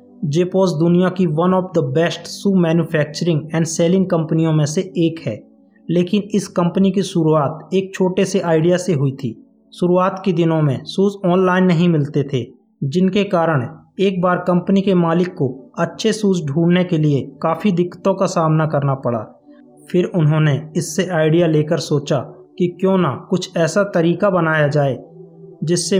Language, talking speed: Hindi, 165 wpm